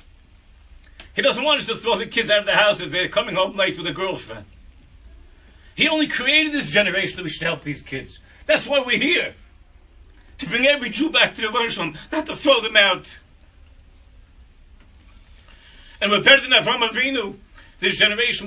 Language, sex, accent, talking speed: English, male, American, 180 wpm